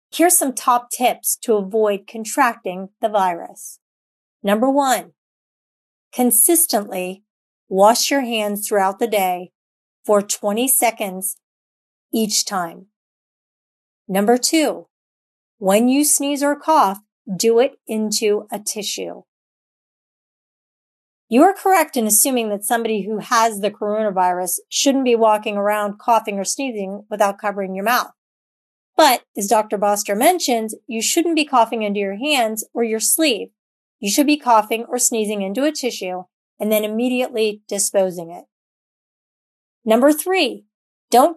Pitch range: 205-260 Hz